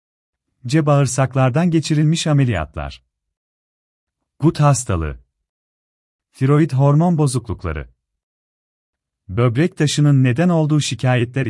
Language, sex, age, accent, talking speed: Turkish, male, 40-59, native, 75 wpm